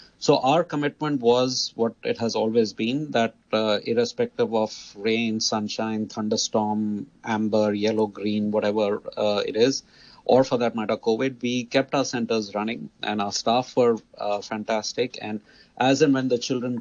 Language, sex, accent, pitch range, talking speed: English, male, Indian, 110-130 Hz, 160 wpm